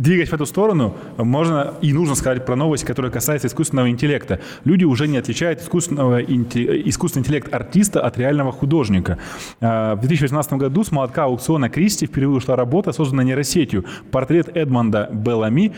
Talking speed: 150 wpm